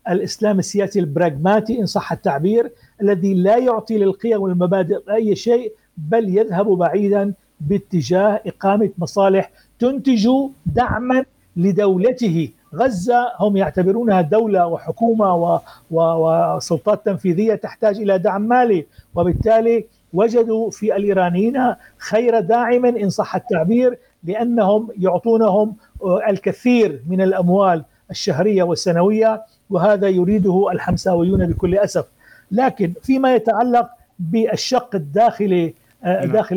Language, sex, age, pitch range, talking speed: Arabic, male, 60-79, 180-225 Hz, 100 wpm